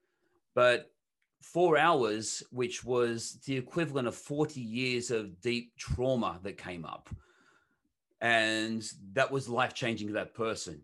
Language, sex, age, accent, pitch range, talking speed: English, male, 30-49, Australian, 115-150 Hz, 135 wpm